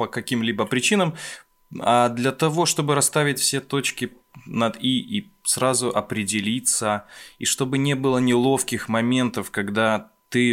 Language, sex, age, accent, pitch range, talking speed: Russian, male, 20-39, native, 95-120 Hz, 130 wpm